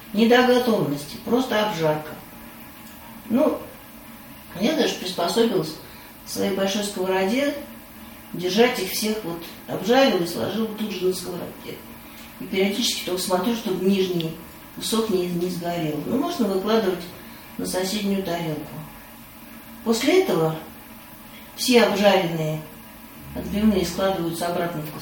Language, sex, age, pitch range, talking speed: Russian, female, 40-59, 175-235 Hz, 115 wpm